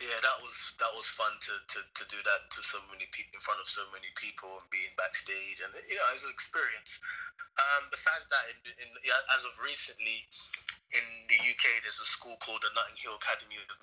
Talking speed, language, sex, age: 220 wpm, English, male, 20-39